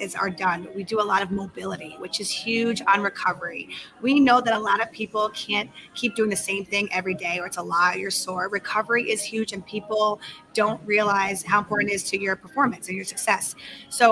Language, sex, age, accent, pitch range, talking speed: English, female, 20-39, American, 195-230 Hz, 220 wpm